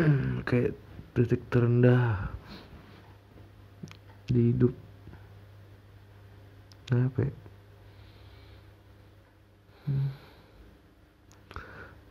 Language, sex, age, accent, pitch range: Indonesian, male, 20-39, native, 100-125 Hz